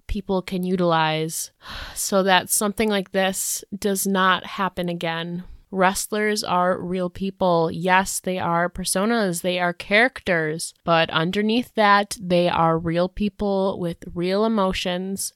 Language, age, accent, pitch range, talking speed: English, 20-39, American, 165-185 Hz, 130 wpm